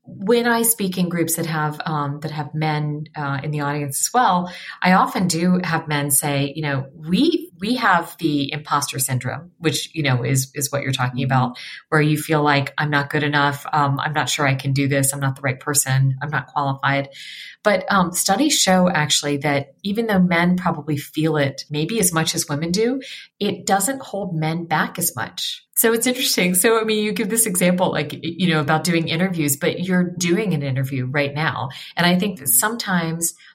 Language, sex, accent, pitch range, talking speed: English, female, American, 145-185 Hz, 210 wpm